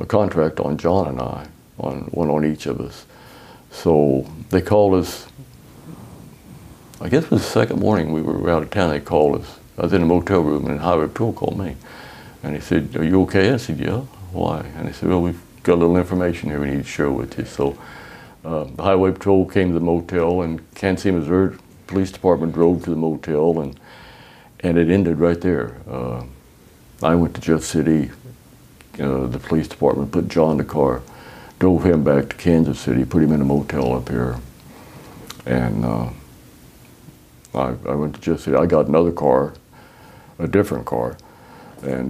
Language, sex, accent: English, male, American